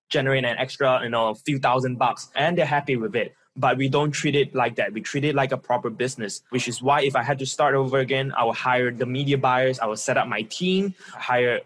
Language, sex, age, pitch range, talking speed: English, male, 20-39, 120-140 Hz, 255 wpm